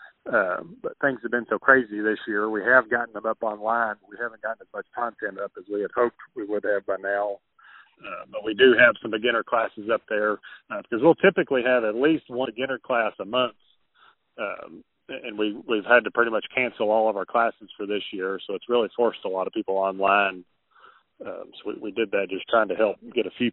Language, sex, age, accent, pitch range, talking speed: English, male, 40-59, American, 100-125 Hz, 235 wpm